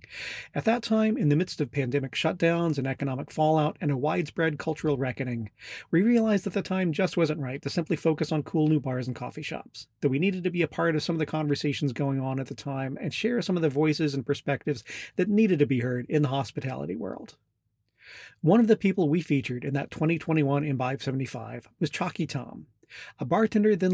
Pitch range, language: 135-165 Hz, English